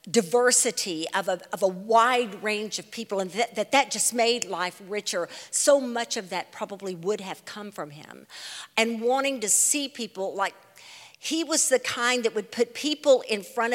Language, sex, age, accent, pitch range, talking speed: English, female, 50-69, American, 195-240 Hz, 185 wpm